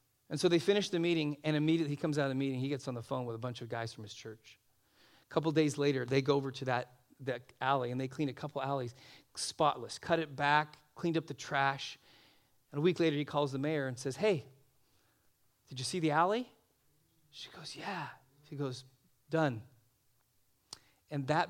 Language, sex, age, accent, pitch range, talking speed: English, male, 40-59, American, 125-155 Hz, 210 wpm